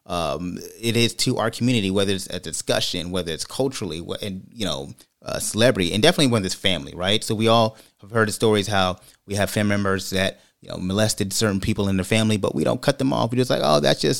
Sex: male